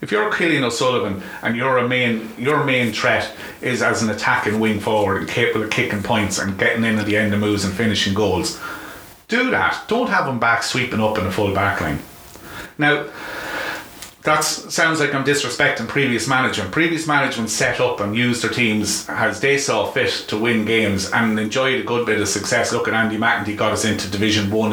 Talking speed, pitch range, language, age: 210 wpm, 105-125 Hz, English, 30-49